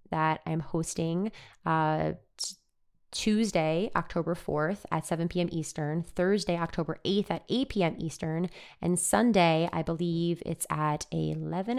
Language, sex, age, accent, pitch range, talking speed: English, female, 20-39, American, 155-190 Hz, 125 wpm